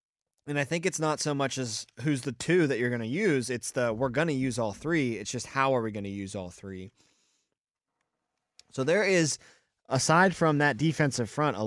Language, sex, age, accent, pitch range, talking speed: English, male, 20-39, American, 105-130 Hz, 220 wpm